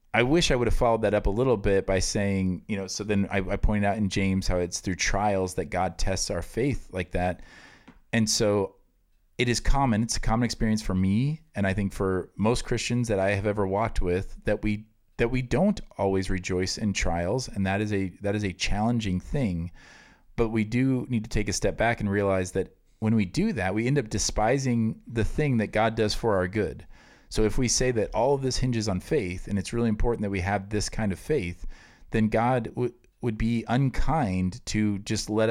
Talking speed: 225 wpm